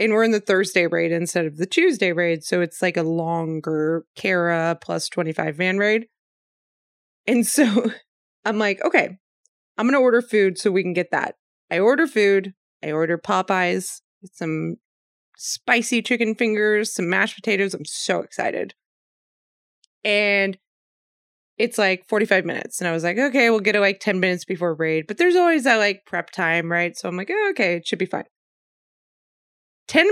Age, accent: 20-39, American